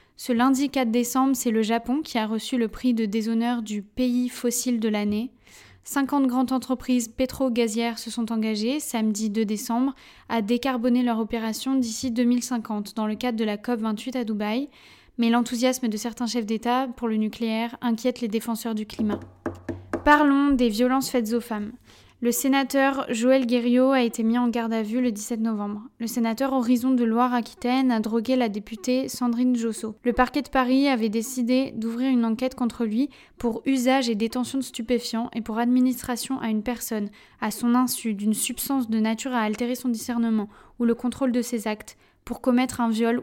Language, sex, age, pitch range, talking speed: French, female, 20-39, 225-255 Hz, 185 wpm